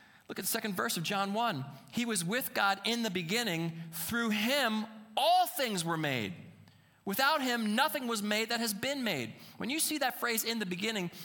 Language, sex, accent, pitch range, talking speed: English, male, American, 135-220 Hz, 205 wpm